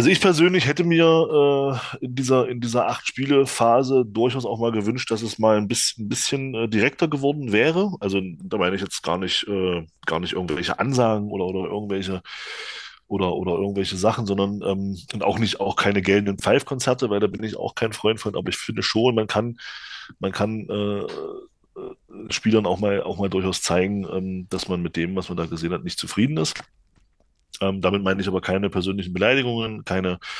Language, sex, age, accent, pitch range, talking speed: German, male, 20-39, German, 95-125 Hz, 195 wpm